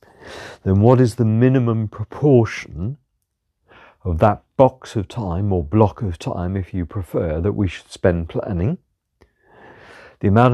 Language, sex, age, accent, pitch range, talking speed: English, male, 50-69, British, 90-120 Hz, 140 wpm